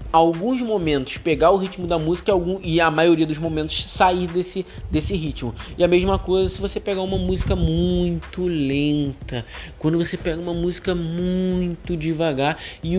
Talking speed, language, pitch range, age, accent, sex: 160 wpm, Portuguese, 145-190 Hz, 20-39, Brazilian, male